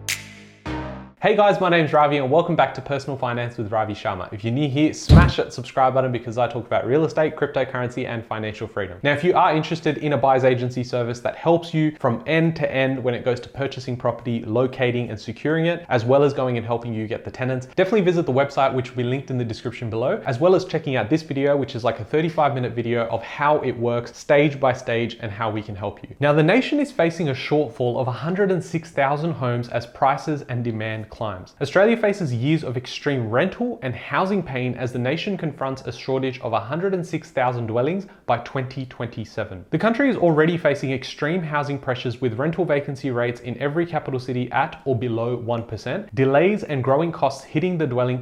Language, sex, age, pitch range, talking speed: English, male, 20-39, 120-155 Hz, 215 wpm